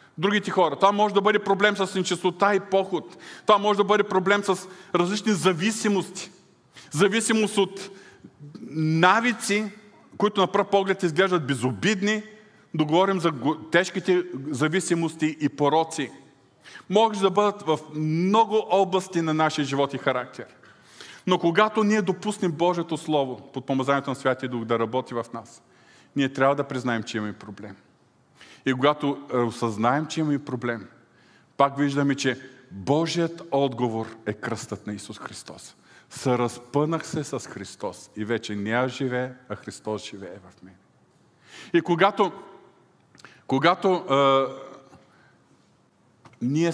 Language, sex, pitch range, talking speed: Bulgarian, male, 130-190 Hz, 130 wpm